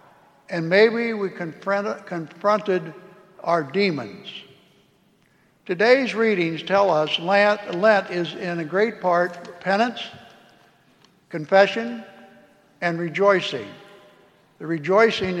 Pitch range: 175-210 Hz